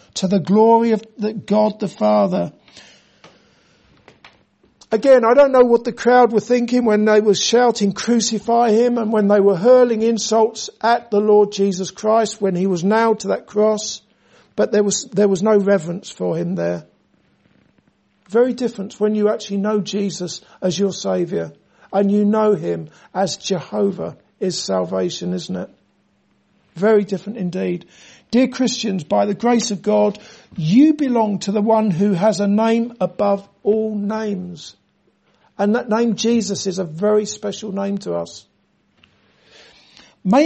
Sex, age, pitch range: male, 50-69, 195-230 Hz